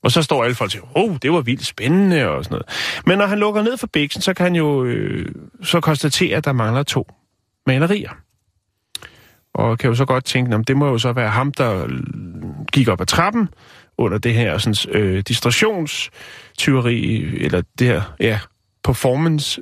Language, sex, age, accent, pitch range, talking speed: Danish, male, 30-49, native, 115-150 Hz, 190 wpm